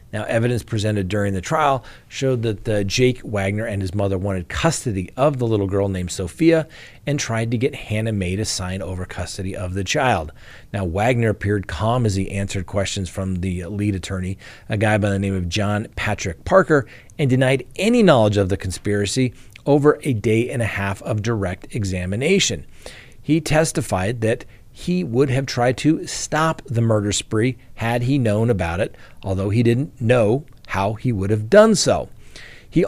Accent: American